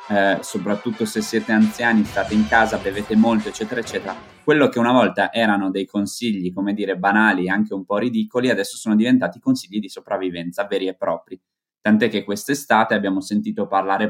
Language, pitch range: Italian, 95-110 Hz